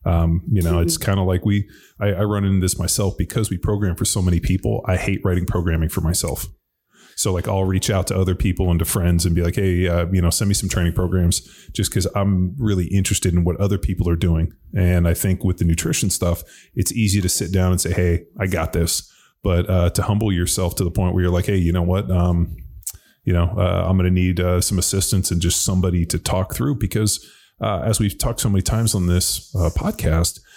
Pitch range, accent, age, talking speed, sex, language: 90-100 Hz, American, 20-39, 240 wpm, male, English